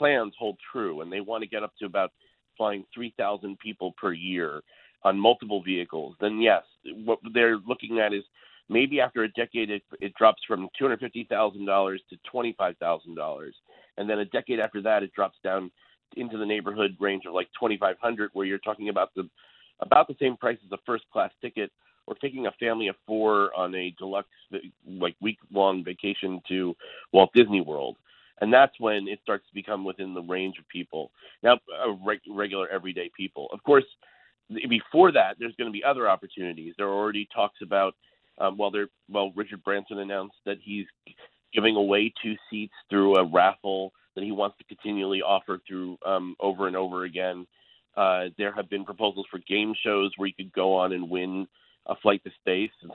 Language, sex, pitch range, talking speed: English, male, 95-105 Hz, 195 wpm